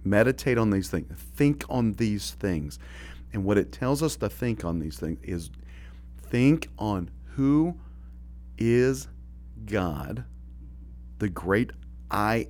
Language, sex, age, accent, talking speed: English, male, 40-59, American, 130 wpm